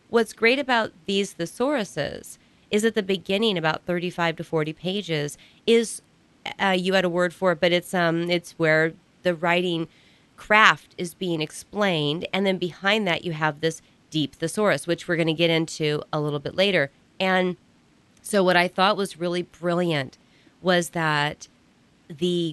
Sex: female